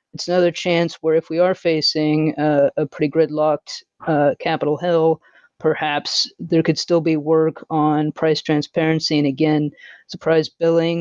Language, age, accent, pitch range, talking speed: English, 30-49, American, 150-170 Hz, 155 wpm